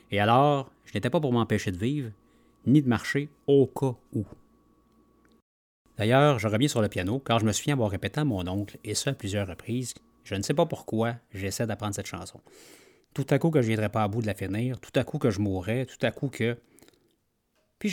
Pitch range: 105-140 Hz